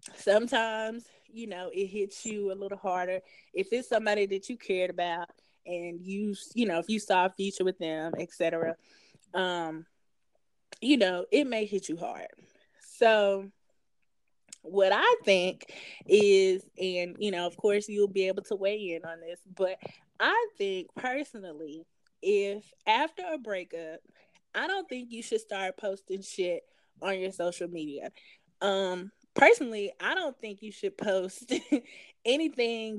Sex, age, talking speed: female, 20-39, 150 wpm